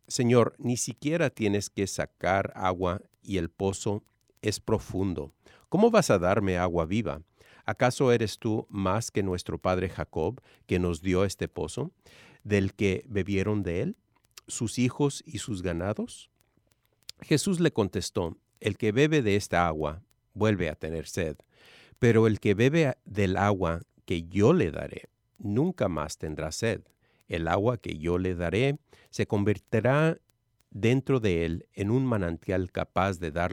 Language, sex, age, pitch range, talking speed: English, male, 50-69, 90-120 Hz, 150 wpm